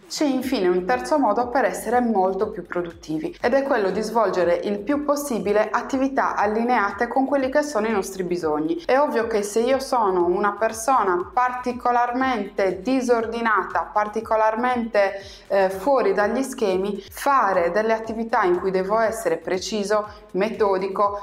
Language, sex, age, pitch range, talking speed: Italian, female, 20-39, 185-245 Hz, 145 wpm